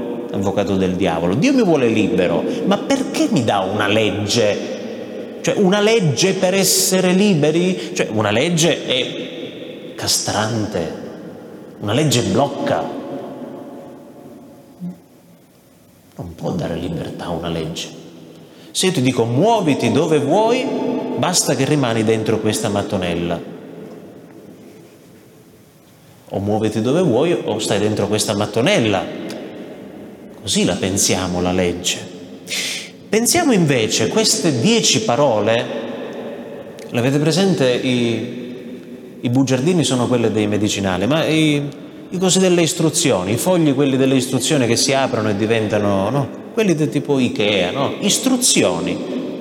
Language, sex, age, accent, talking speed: Italian, male, 30-49, native, 120 wpm